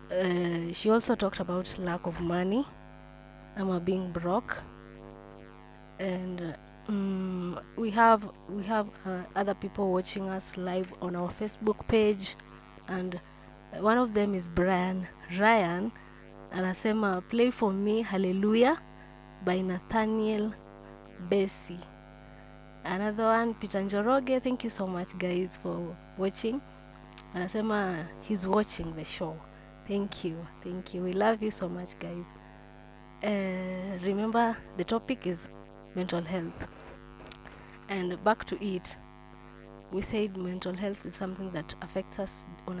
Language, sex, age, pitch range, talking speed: Swahili, female, 20-39, 175-210 Hz, 130 wpm